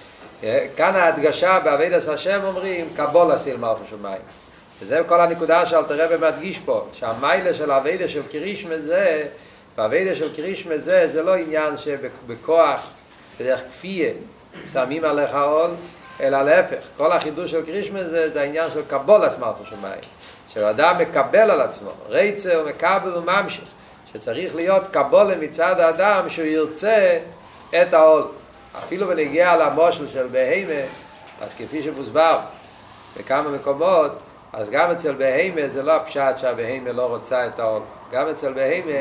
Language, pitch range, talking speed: Hebrew, 130-175 Hz, 135 wpm